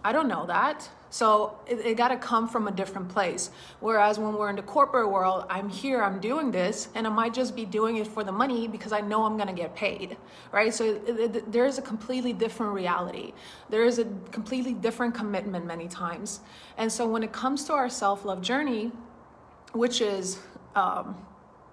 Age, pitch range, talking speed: 30-49, 195-235 Hz, 205 wpm